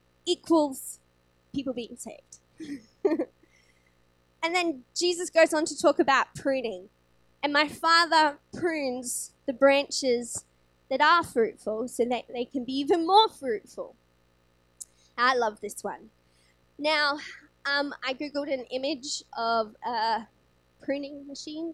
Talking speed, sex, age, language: 120 wpm, female, 20-39, English